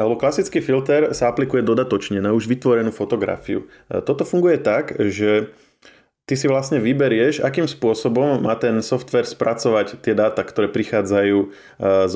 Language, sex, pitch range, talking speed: Slovak, male, 100-120 Hz, 145 wpm